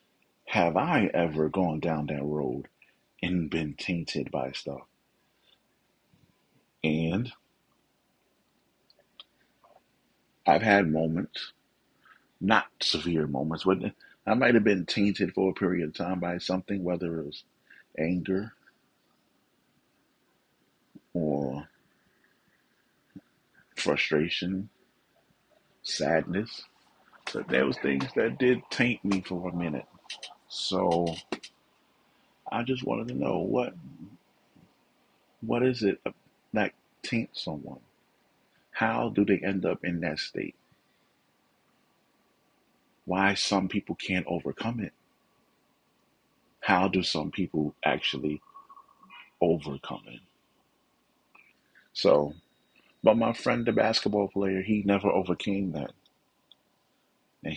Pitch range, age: 80-100 Hz, 40-59